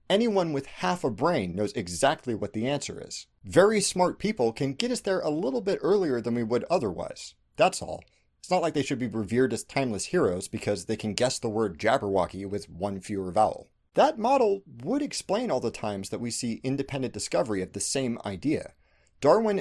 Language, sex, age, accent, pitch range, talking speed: English, male, 30-49, American, 110-165 Hz, 200 wpm